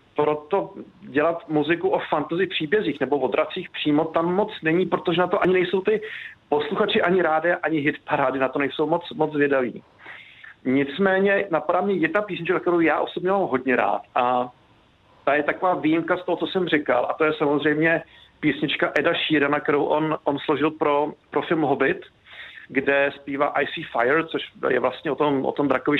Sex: male